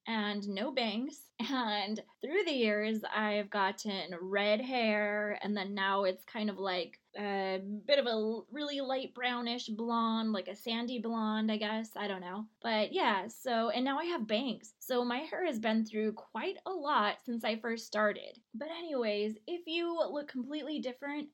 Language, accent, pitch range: English, American, 215-275 Hz